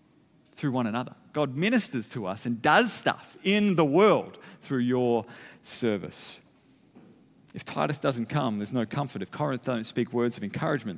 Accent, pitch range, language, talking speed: Australian, 130-155 Hz, English, 165 wpm